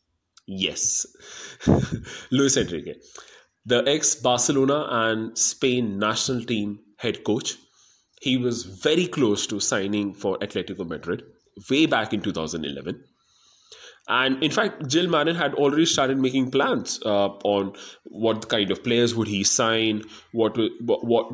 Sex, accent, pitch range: male, Indian, 100-125 Hz